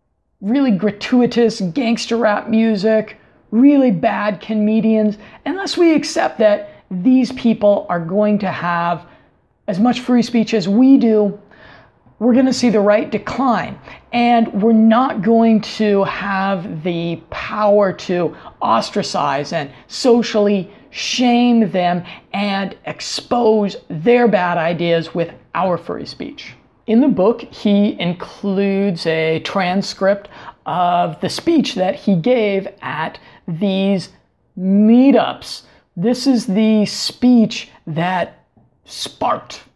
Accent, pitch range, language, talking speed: American, 190-235 Hz, English, 115 wpm